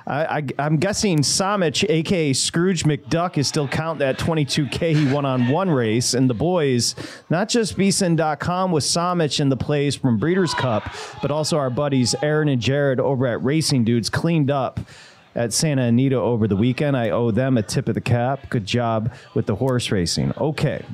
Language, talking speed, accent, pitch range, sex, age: English, 185 wpm, American, 125-165 Hz, male, 30-49